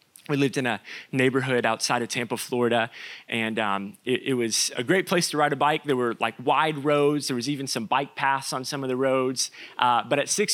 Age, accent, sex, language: 30-49, American, male, English